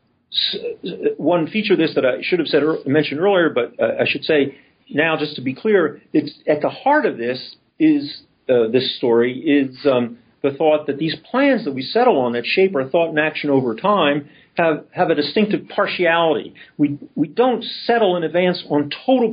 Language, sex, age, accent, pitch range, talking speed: English, male, 50-69, American, 125-180 Hz, 195 wpm